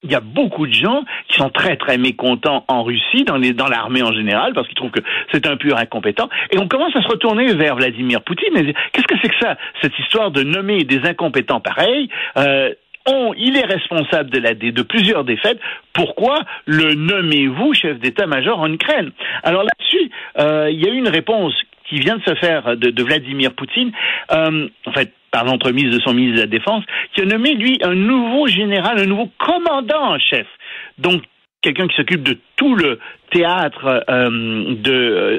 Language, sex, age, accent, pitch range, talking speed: French, male, 60-79, French, 130-220 Hz, 200 wpm